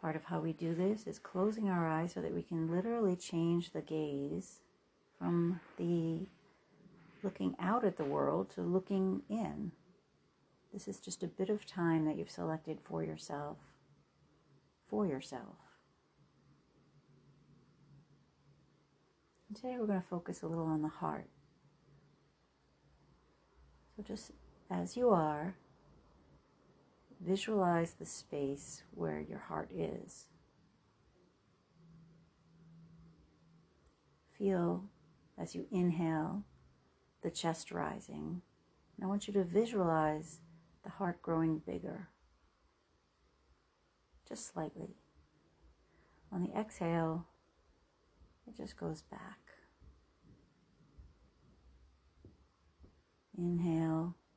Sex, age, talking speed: female, 40-59, 100 wpm